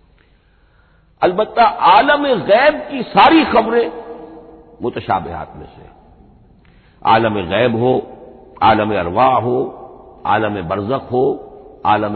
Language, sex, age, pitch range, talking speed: Hindi, male, 60-79, 105-160 Hz, 95 wpm